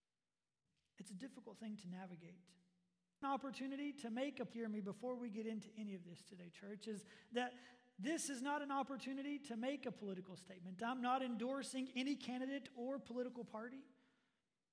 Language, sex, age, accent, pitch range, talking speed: English, male, 40-59, American, 210-260 Hz, 165 wpm